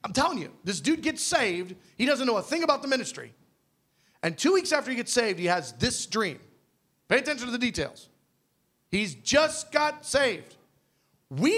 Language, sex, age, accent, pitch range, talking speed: English, male, 40-59, American, 175-240 Hz, 185 wpm